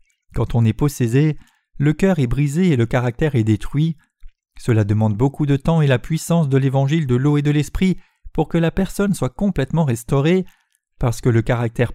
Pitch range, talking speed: 125-165 Hz, 195 wpm